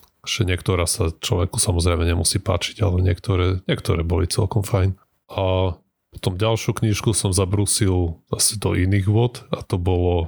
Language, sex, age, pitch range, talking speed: Slovak, male, 20-39, 90-105 Hz, 150 wpm